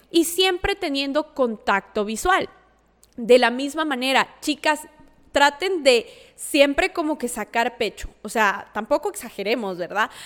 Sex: female